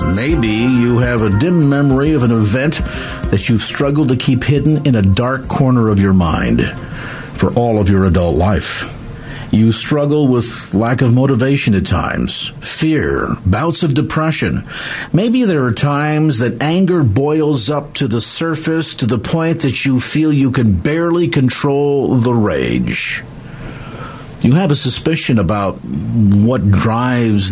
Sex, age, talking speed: male, 50-69, 155 wpm